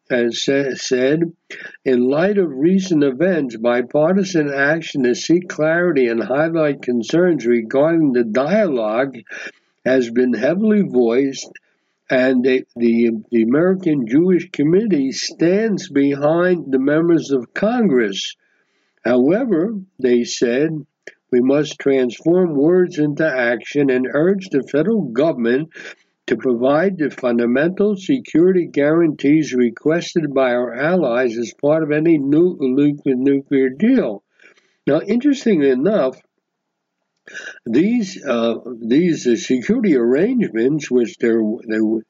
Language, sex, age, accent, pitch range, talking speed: English, male, 60-79, American, 130-180 Hz, 110 wpm